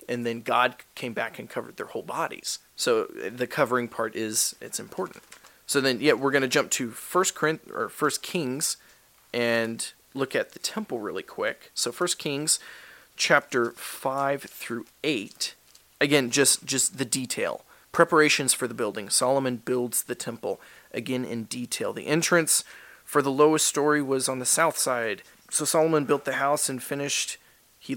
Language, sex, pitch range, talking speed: English, male, 125-150 Hz, 165 wpm